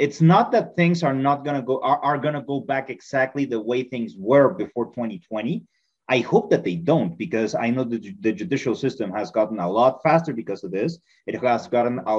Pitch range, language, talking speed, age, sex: 125-165 Hz, English, 215 wpm, 30-49, male